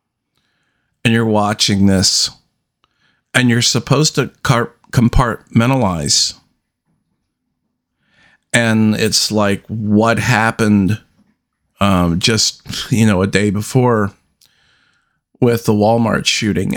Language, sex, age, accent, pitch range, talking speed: English, male, 50-69, American, 100-120 Hz, 90 wpm